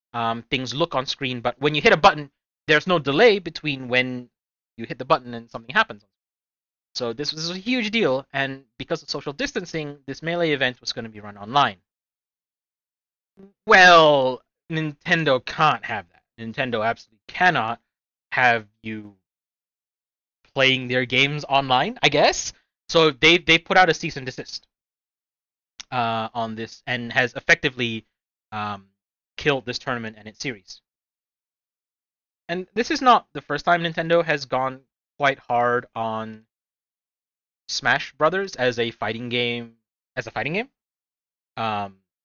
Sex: male